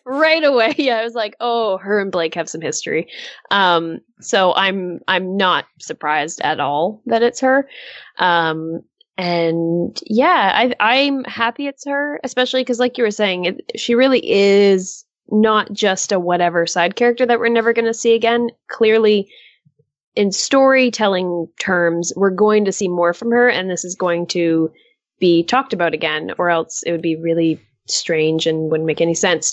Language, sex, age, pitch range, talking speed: English, female, 10-29, 175-240 Hz, 175 wpm